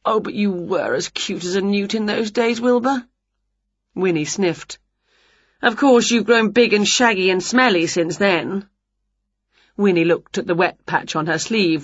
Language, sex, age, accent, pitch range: Chinese, female, 40-59, British, 170-230 Hz